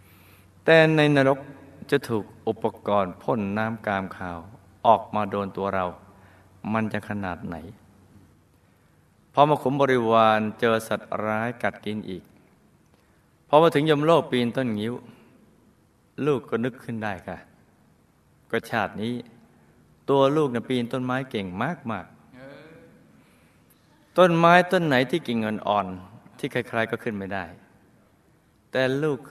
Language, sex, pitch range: Thai, male, 105-135 Hz